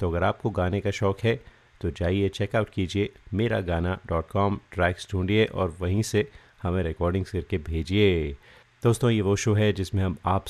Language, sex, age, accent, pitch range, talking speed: Hindi, male, 30-49, native, 90-110 Hz, 165 wpm